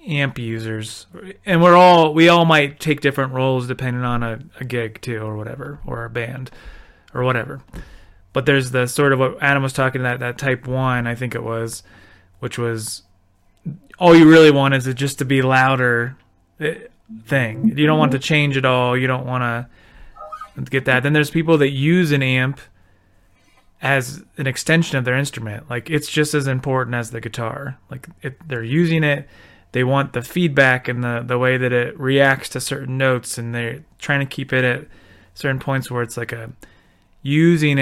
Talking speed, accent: 190 wpm, American